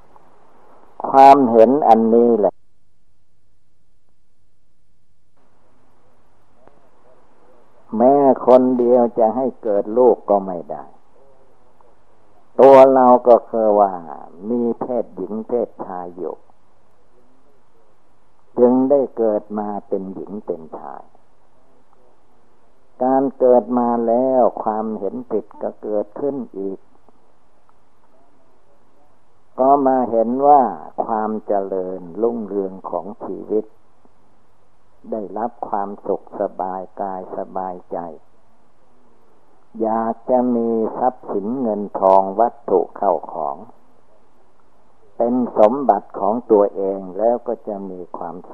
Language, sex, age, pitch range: Thai, male, 60-79, 100-125 Hz